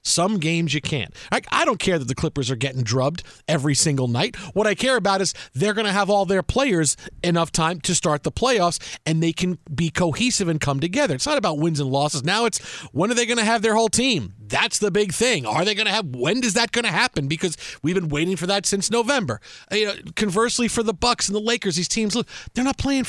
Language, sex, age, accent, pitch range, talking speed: English, male, 40-59, American, 150-210 Hz, 245 wpm